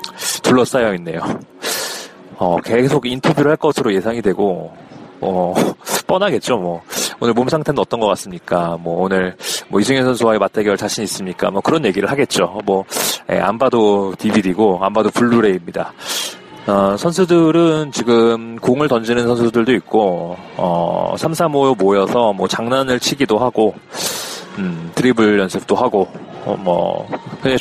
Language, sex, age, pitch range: Korean, male, 30-49, 100-135 Hz